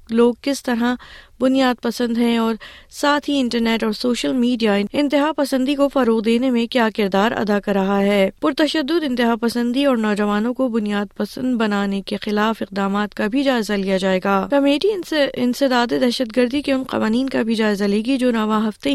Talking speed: 185 wpm